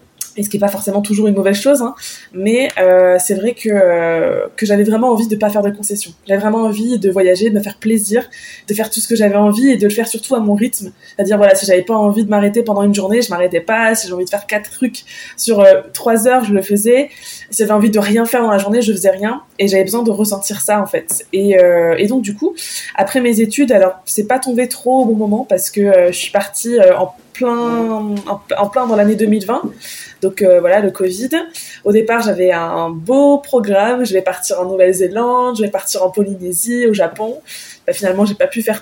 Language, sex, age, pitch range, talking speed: French, female, 20-39, 195-240 Hz, 250 wpm